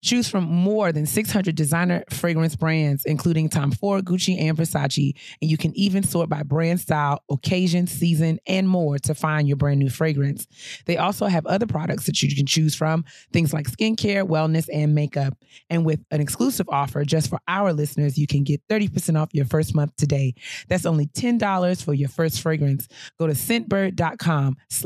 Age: 30-49